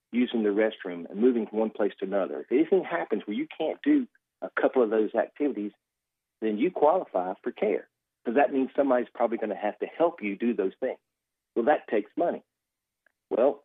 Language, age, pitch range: English, 50-69, 105-160 Hz